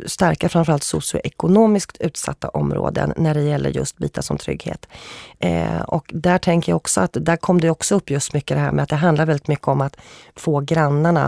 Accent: native